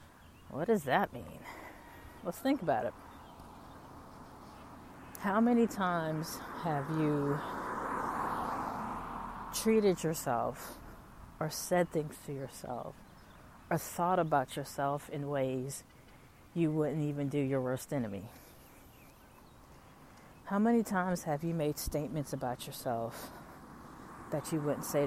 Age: 40-59